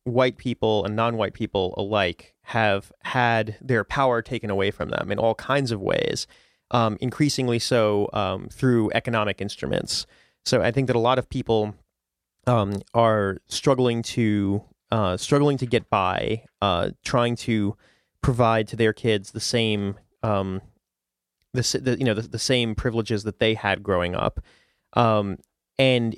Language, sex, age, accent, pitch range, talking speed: English, male, 30-49, American, 105-130 Hz, 155 wpm